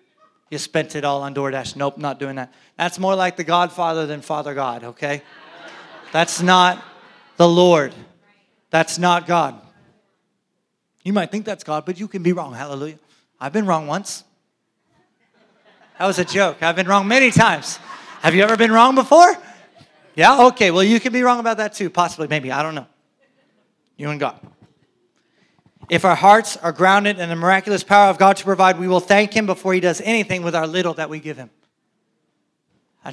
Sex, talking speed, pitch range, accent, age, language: male, 185 wpm, 165-210 Hz, American, 30-49, English